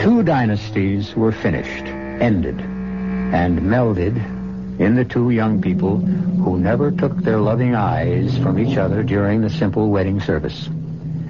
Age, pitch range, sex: 60-79, 95-145 Hz, male